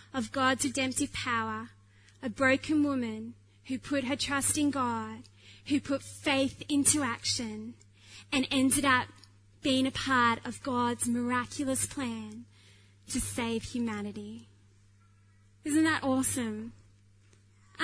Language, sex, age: English, female, 20-39